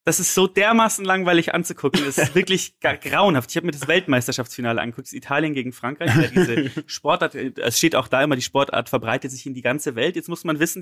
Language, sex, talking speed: German, male, 230 wpm